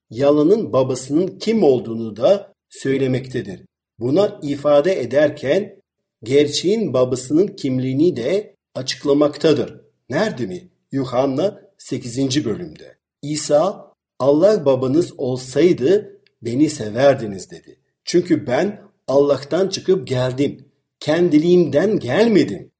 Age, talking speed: 50-69, 85 wpm